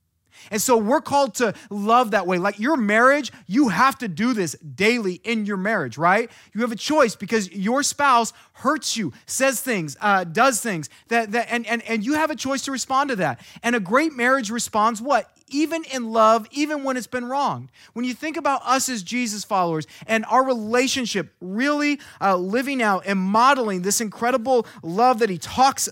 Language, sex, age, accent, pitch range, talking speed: English, male, 30-49, American, 190-250 Hz, 195 wpm